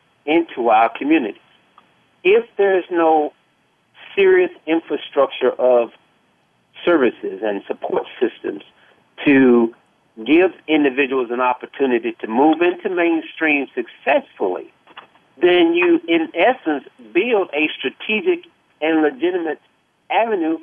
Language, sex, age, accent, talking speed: English, male, 50-69, American, 95 wpm